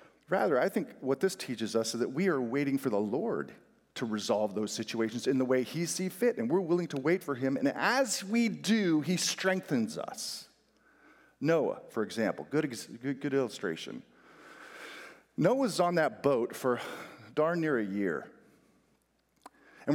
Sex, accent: male, American